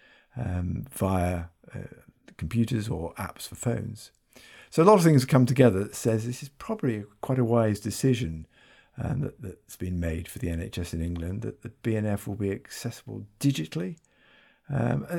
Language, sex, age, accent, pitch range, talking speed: English, male, 50-69, British, 95-125 Hz, 170 wpm